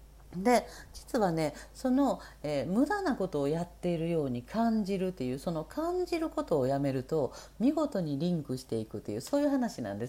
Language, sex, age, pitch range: Japanese, female, 50-69, 150-245 Hz